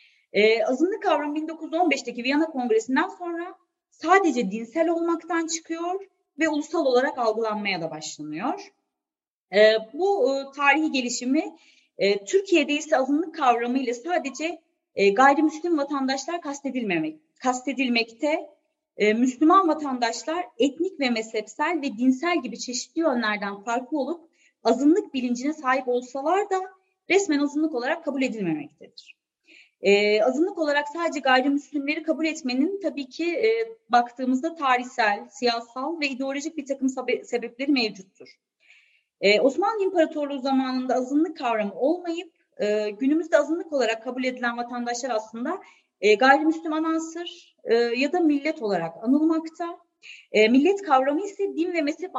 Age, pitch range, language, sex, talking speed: 30-49, 245-330 Hz, Turkish, female, 125 wpm